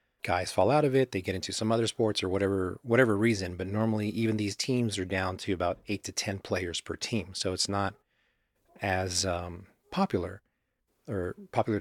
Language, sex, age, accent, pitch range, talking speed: English, male, 40-59, American, 95-105 Hz, 195 wpm